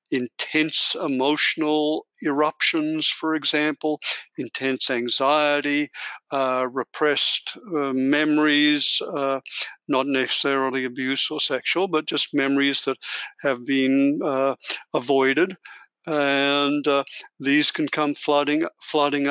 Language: English